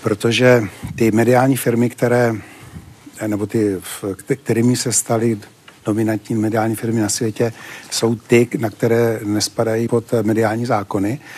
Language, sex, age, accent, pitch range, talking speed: Czech, male, 60-79, native, 105-120 Hz, 120 wpm